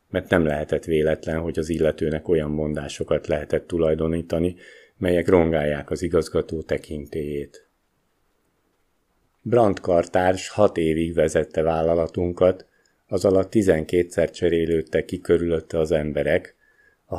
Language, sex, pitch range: Hungarian, male, 80-95 Hz